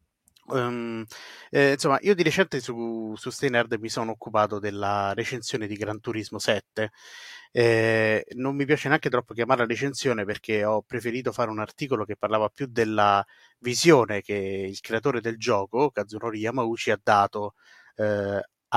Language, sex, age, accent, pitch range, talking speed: Italian, male, 30-49, native, 105-120 Hz, 155 wpm